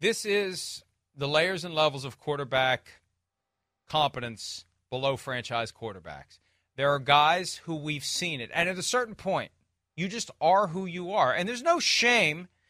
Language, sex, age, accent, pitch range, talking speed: English, male, 40-59, American, 130-180 Hz, 160 wpm